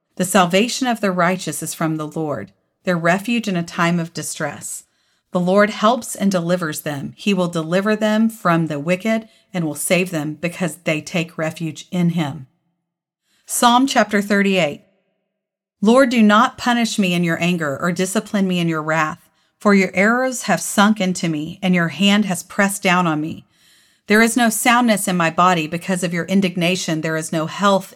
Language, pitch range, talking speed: English, 165-200 Hz, 185 wpm